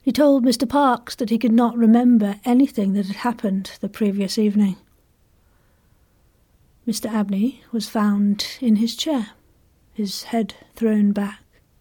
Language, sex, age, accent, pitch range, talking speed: English, female, 40-59, British, 205-240 Hz, 135 wpm